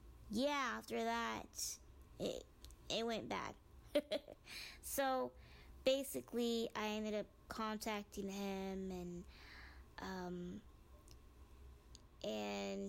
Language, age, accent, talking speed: English, 20-39, American, 80 wpm